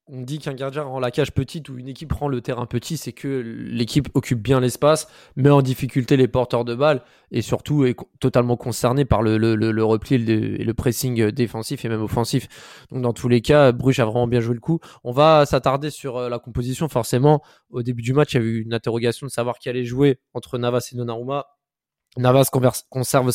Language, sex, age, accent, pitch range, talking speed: French, male, 20-39, French, 115-135 Hz, 220 wpm